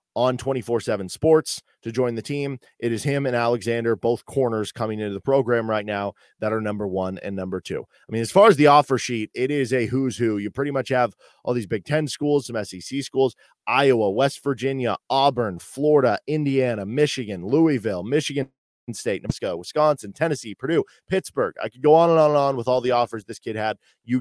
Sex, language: male, English